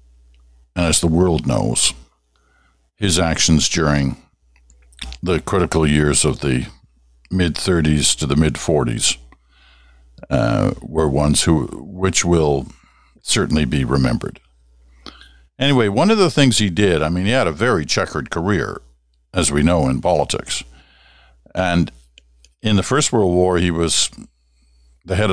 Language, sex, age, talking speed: English, male, 60-79, 135 wpm